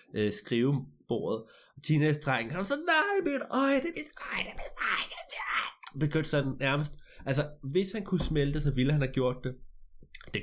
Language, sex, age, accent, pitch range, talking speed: Danish, male, 20-39, native, 115-150 Hz, 195 wpm